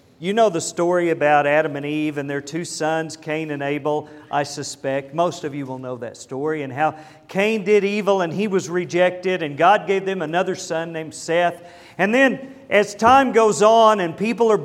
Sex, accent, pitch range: male, American, 155-210 Hz